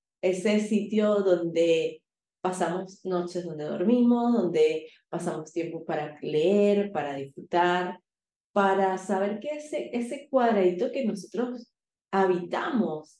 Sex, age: female, 20-39